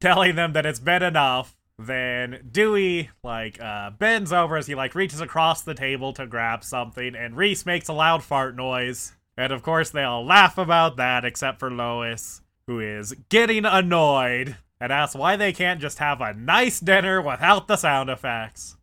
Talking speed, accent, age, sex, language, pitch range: 185 wpm, American, 20-39, male, English, 125-175 Hz